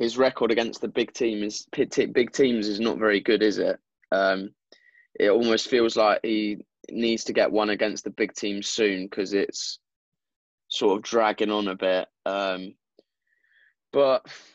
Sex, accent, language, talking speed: male, British, English, 155 wpm